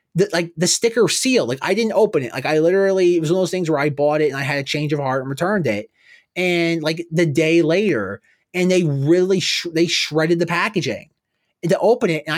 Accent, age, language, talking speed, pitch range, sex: American, 20-39, English, 245 wpm, 150-195 Hz, male